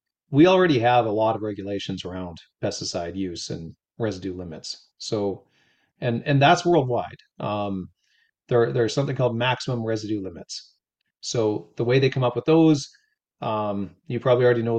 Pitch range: 105-130 Hz